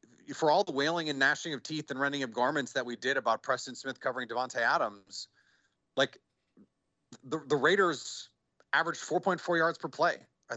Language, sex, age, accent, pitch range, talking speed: English, male, 30-49, American, 130-165 Hz, 175 wpm